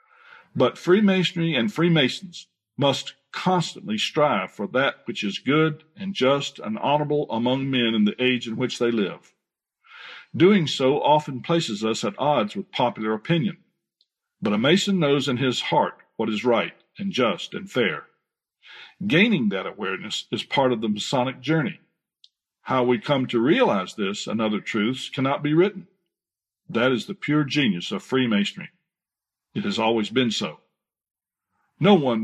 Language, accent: English, American